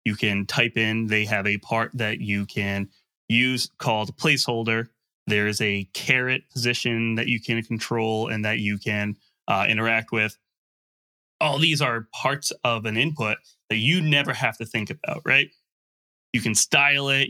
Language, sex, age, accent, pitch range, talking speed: English, male, 20-39, American, 110-135 Hz, 170 wpm